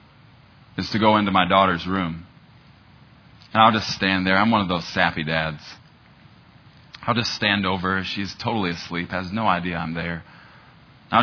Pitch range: 95-125 Hz